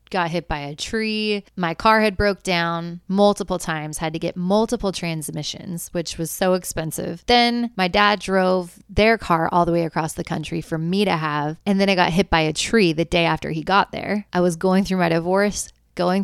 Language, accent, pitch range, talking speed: English, American, 160-195 Hz, 215 wpm